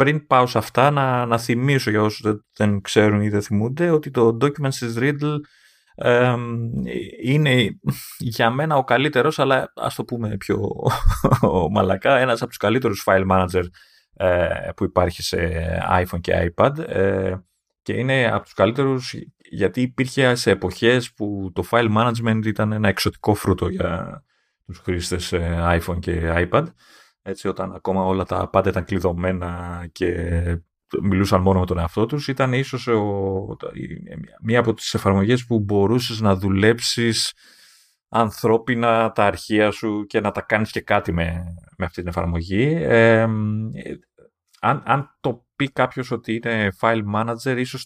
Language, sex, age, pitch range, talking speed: Greek, male, 30-49, 95-125 Hz, 150 wpm